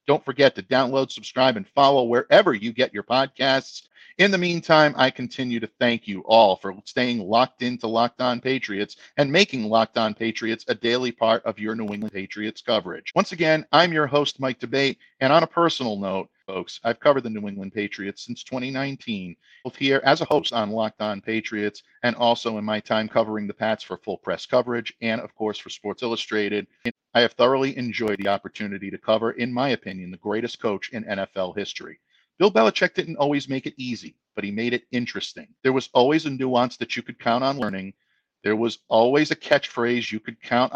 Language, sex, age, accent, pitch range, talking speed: English, male, 50-69, American, 110-135 Hz, 205 wpm